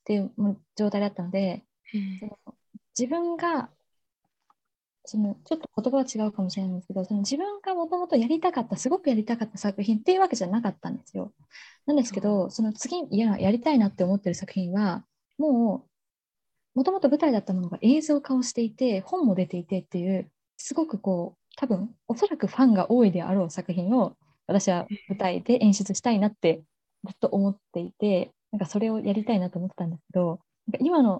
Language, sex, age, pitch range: Japanese, female, 20-39, 185-245 Hz